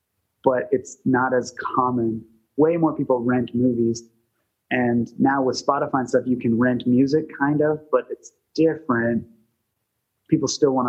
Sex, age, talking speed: male, 30-49, 155 wpm